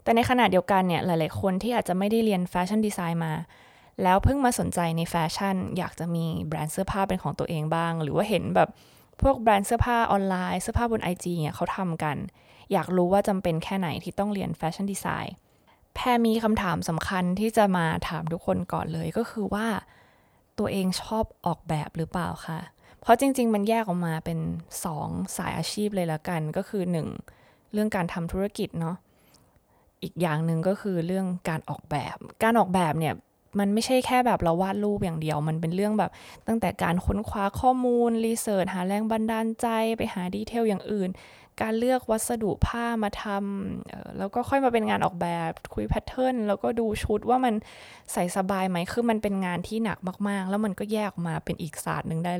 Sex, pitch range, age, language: female, 170-220 Hz, 20-39, Thai